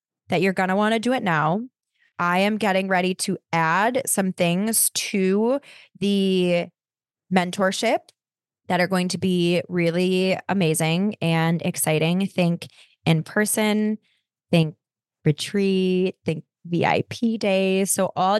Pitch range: 170-195 Hz